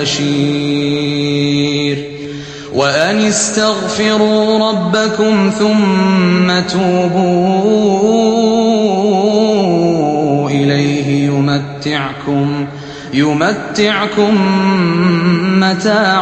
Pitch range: 145-195 Hz